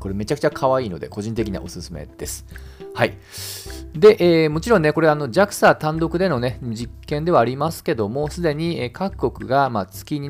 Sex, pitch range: male, 100-160 Hz